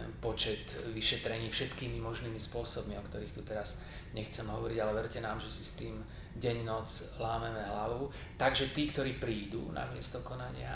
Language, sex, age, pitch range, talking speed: Slovak, male, 30-49, 110-125 Hz, 155 wpm